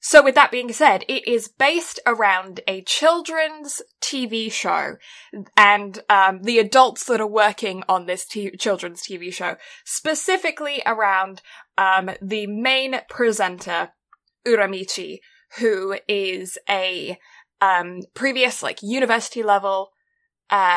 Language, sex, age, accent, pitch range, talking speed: English, female, 20-39, British, 205-275 Hz, 120 wpm